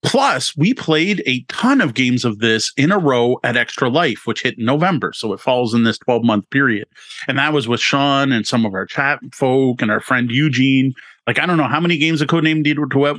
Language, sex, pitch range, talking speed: English, male, 120-160 Hz, 230 wpm